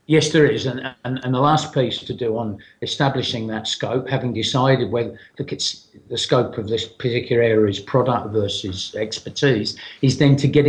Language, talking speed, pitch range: English, 190 wpm, 115-145 Hz